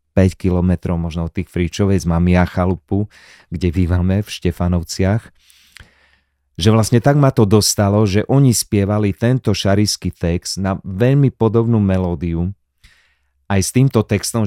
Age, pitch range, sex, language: 30-49, 90-105 Hz, male, Slovak